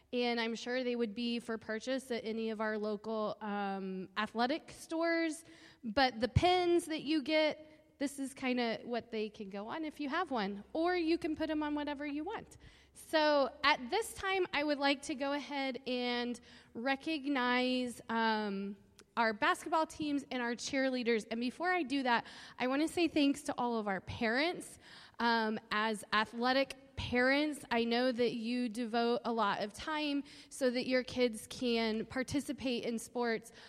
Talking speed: 175 wpm